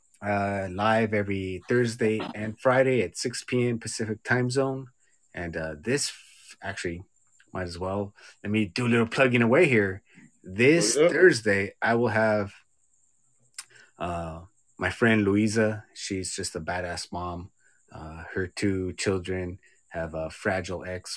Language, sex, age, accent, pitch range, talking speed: English, male, 30-49, American, 90-110 Hz, 140 wpm